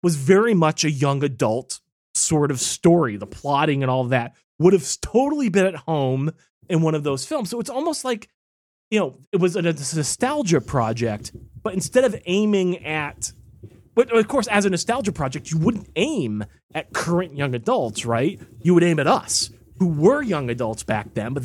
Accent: American